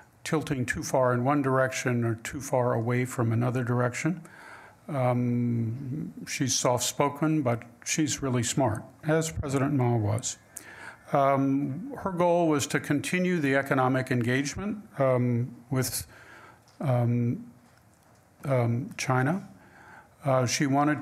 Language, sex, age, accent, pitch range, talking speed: English, male, 50-69, American, 120-145 Hz, 115 wpm